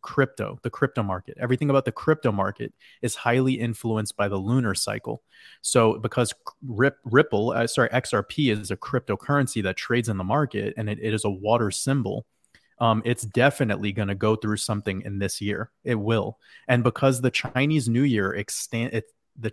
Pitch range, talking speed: 105-125 Hz, 180 wpm